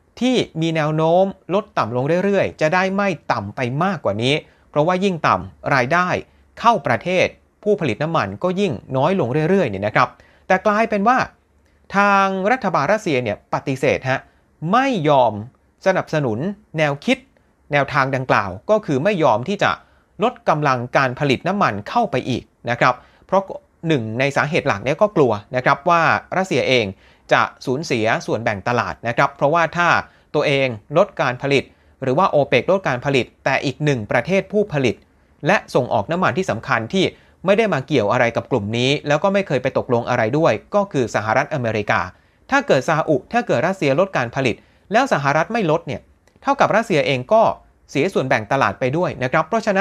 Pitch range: 125-190 Hz